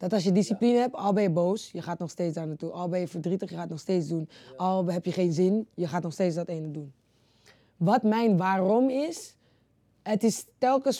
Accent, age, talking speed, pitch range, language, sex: Dutch, 20-39, 240 wpm, 180-220 Hz, Dutch, female